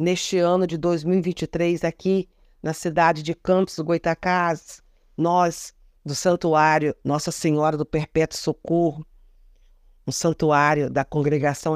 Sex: female